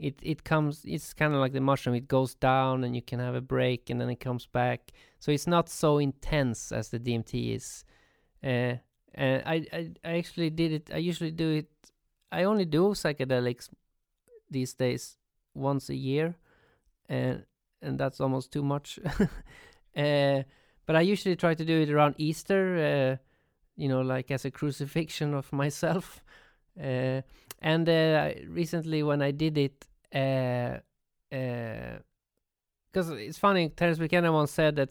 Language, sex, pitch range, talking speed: English, male, 130-155 Hz, 170 wpm